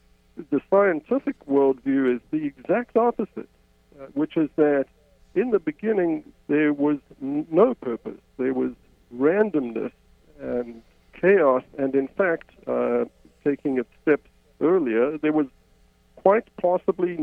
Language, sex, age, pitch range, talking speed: English, male, 50-69, 120-160 Hz, 120 wpm